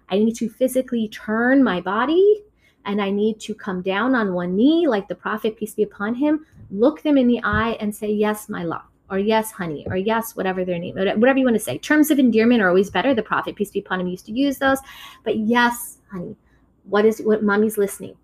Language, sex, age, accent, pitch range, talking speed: English, female, 30-49, American, 180-230 Hz, 230 wpm